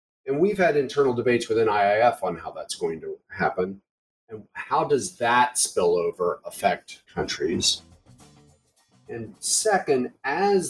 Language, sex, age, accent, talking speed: English, male, 40-59, American, 130 wpm